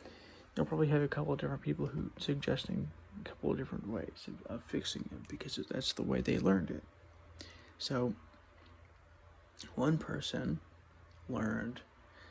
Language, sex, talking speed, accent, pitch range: English, male, 140 wpm, American, 85-125 Hz